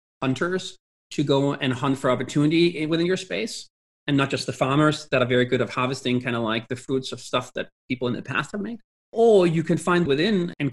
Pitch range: 125-155 Hz